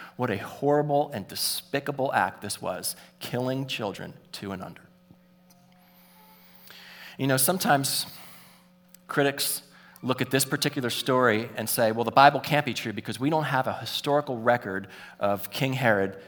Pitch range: 130-175 Hz